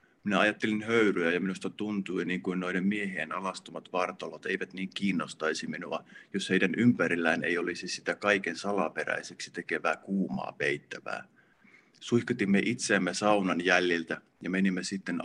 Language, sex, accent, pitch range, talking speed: Finnish, male, native, 90-100 Hz, 135 wpm